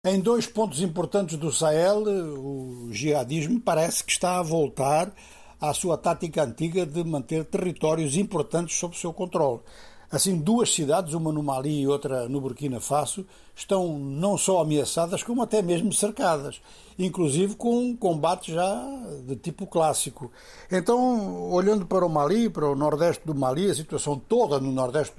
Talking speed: 160 wpm